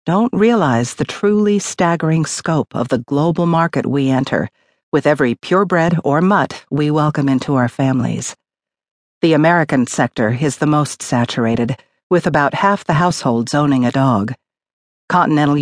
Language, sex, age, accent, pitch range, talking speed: English, female, 50-69, American, 130-165 Hz, 145 wpm